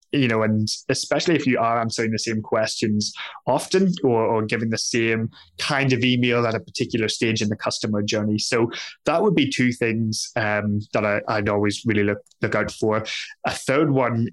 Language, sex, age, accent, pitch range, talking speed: English, male, 20-39, British, 105-130 Hz, 195 wpm